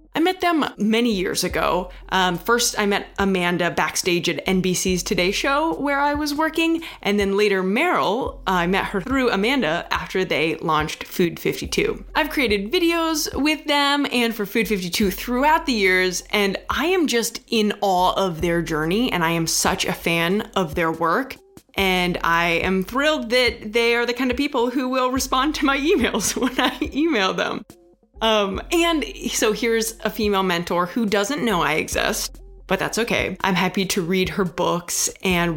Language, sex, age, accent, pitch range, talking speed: English, female, 20-39, American, 185-265 Hz, 175 wpm